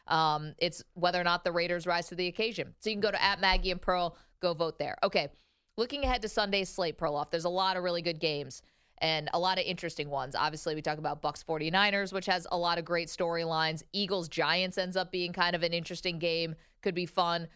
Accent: American